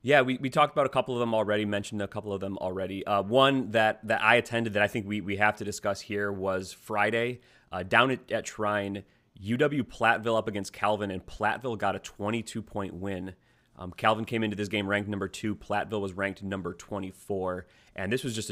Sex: male